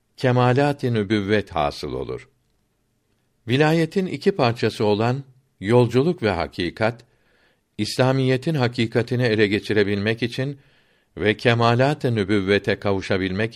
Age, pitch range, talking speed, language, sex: 60-79, 105-125 Hz, 85 wpm, Turkish, male